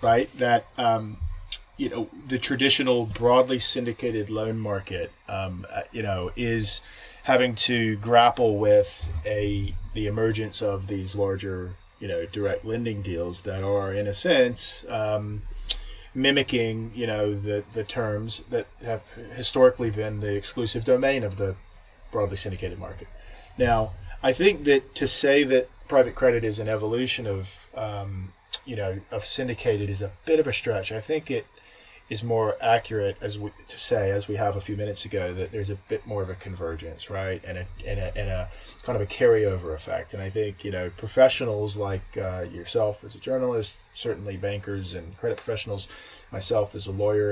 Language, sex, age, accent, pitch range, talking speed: English, male, 20-39, American, 95-115 Hz, 170 wpm